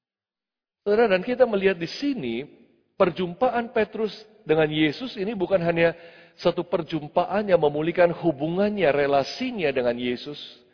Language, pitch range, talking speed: Indonesian, 170-225 Hz, 110 wpm